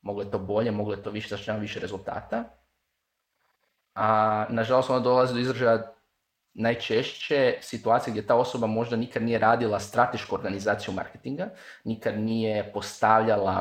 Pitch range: 105-125 Hz